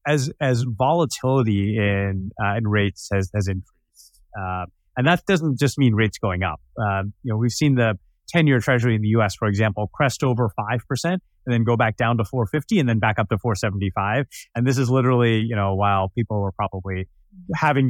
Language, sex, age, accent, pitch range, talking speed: English, male, 30-49, American, 95-125 Hz, 215 wpm